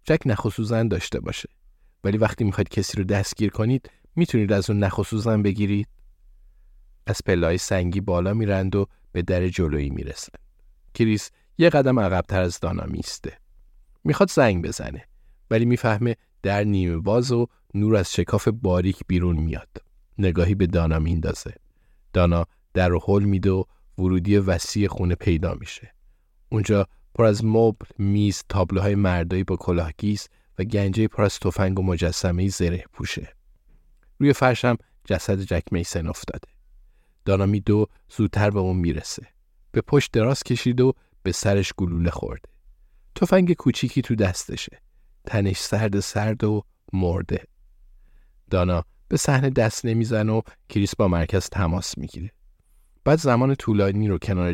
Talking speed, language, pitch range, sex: 140 wpm, Persian, 90-110 Hz, male